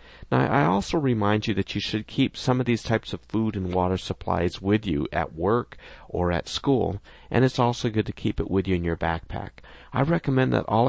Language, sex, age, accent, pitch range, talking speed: English, male, 40-59, American, 95-115 Hz, 225 wpm